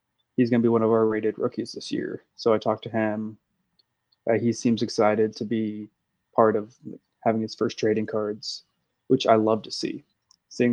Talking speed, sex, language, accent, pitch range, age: 195 wpm, male, English, American, 110-120 Hz, 20-39